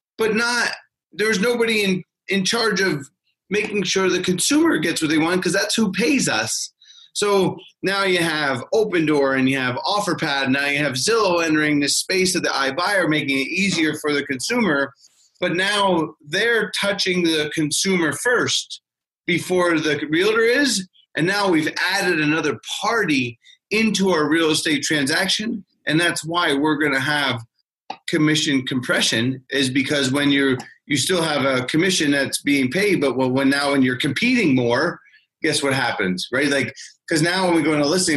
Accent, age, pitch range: American, 30-49, 140-180 Hz